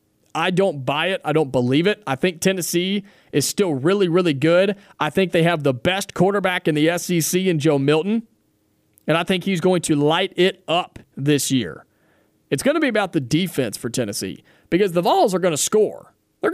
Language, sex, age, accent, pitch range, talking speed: English, male, 30-49, American, 145-205 Hz, 205 wpm